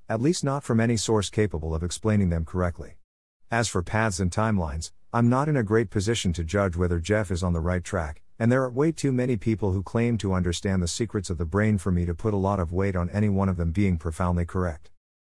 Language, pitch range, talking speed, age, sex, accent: English, 90-115 Hz, 250 wpm, 50-69, male, American